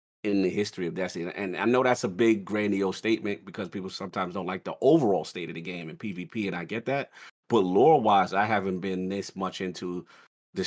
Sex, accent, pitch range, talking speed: male, American, 100-115 Hz, 220 wpm